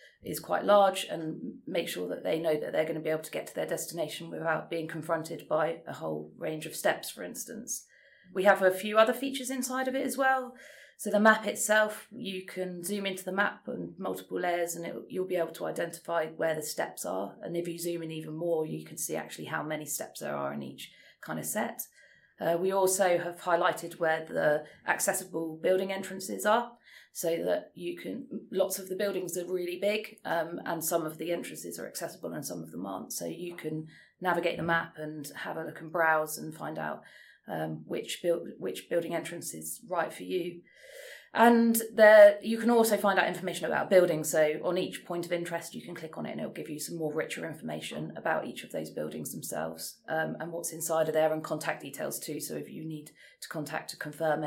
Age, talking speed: 30-49, 220 wpm